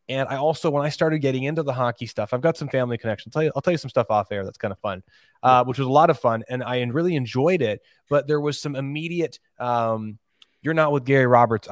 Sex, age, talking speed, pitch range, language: male, 20-39, 260 wpm, 115-140 Hz, English